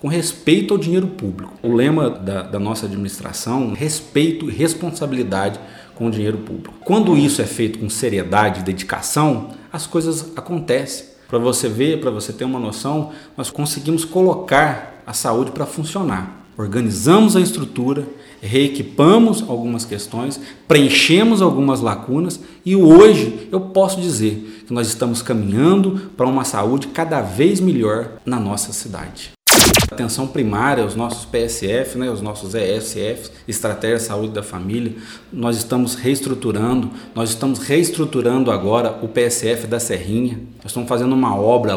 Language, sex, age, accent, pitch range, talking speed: Portuguese, male, 40-59, Brazilian, 110-145 Hz, 140 wpm